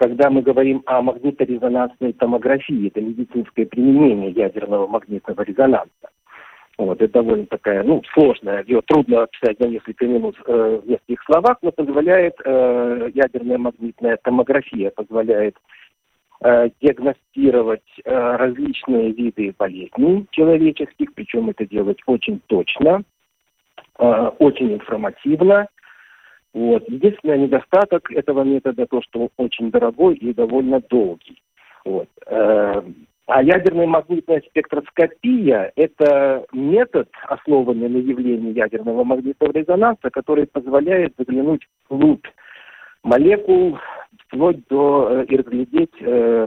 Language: Russian